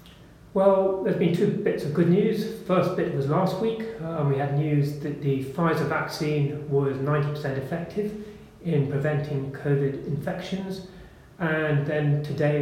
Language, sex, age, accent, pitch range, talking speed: English, male, 30-49, British, 140-165 Hz, 145 wpm